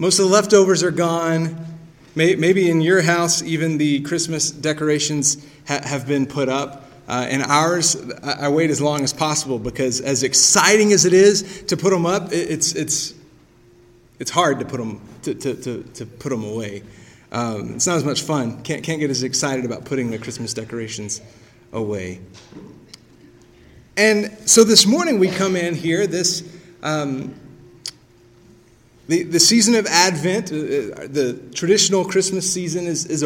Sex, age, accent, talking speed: male, 30-49, American, 160 wpm